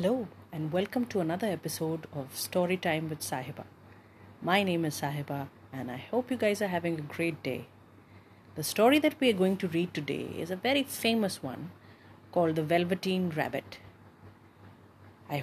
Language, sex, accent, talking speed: English, female, Indian, 165 wpm